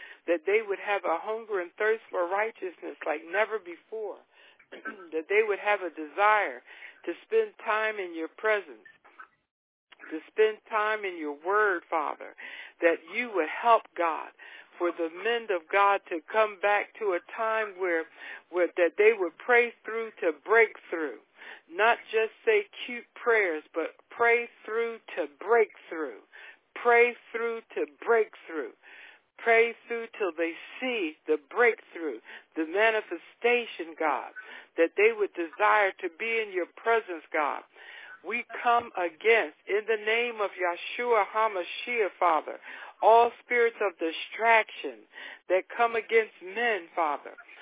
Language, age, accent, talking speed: English, 60-79, American, 140 wpm